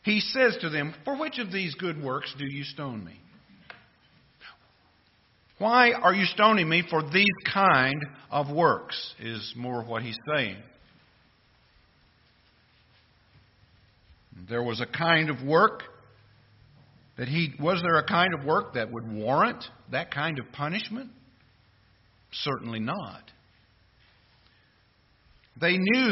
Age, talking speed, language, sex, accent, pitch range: 50-69, 130 wpm, English, male, American, 125-205 Hz